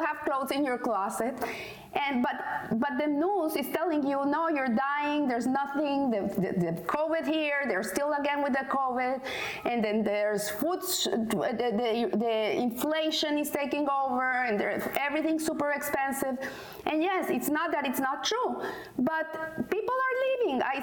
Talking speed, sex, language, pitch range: 170 wpm, female, English, 240-320 Hz